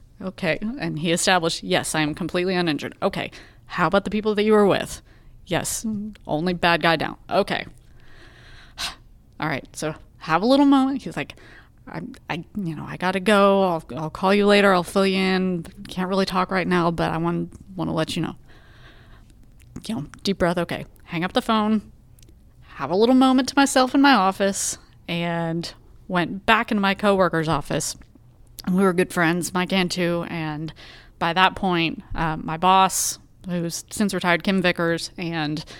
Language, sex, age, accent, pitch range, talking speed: English, female, 30-49, American, 160-195 Hz, 180 wpm